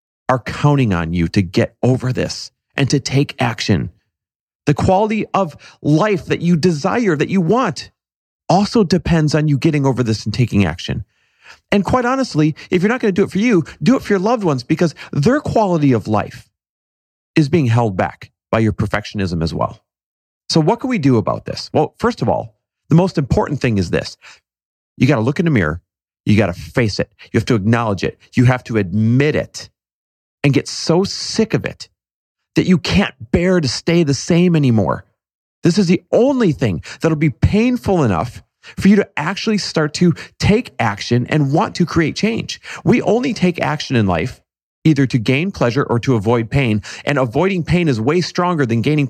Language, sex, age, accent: English, male, 40-59, American